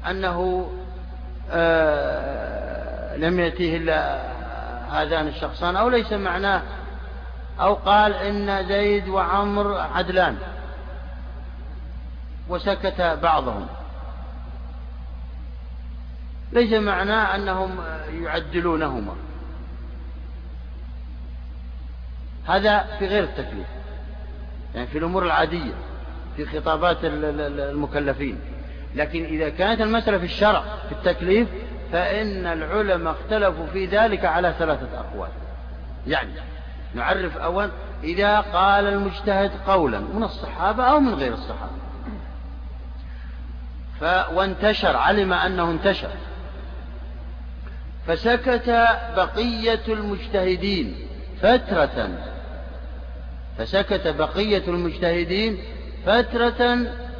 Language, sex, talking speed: Arabic, male, 80 wpm